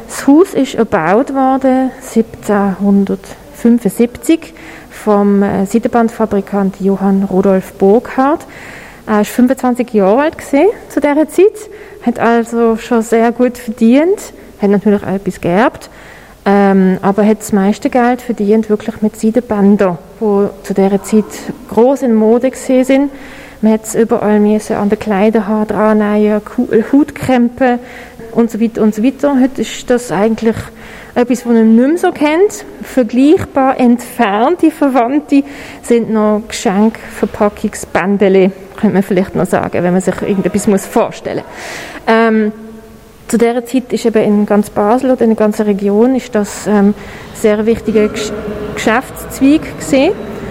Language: German